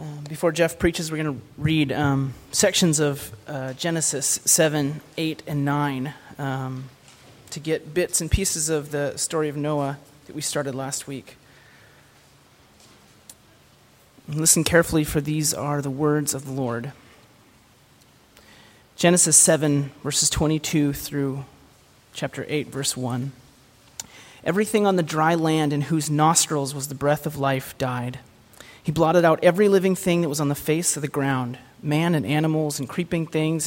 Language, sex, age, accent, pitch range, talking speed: English, male, 30-49, American, 135-155 Hz, 150 wpm